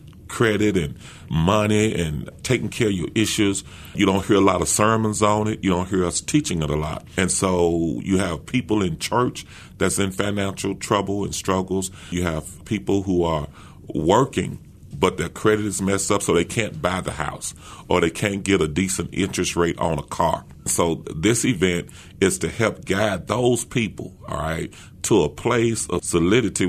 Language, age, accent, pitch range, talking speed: English, 40-59, American, 90-110 Hz, 190 wpm